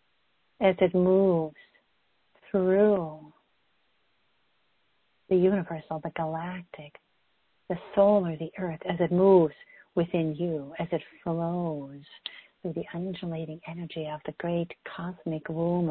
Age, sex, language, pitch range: 50-69, female, English, 160-190 Hz